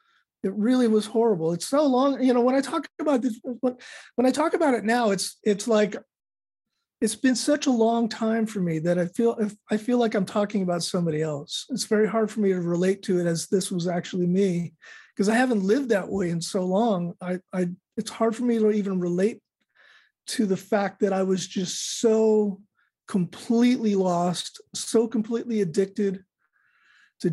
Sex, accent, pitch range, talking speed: male, American, 180-225 Hz, 195 wpm